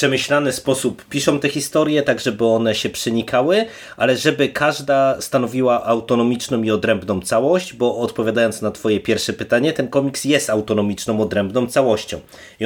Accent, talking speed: native, 145 wpm